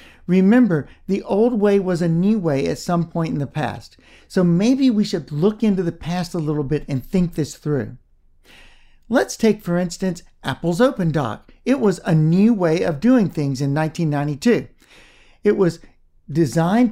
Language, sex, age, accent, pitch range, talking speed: English, male, 60-79, American, 150-200 Hz, 175 wpm